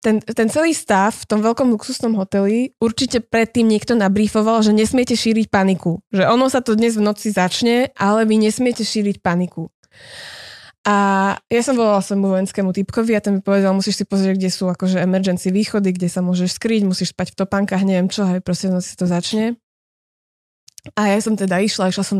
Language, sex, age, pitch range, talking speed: Slovak, female, 20-39, 190-230 Hz, 195 wpm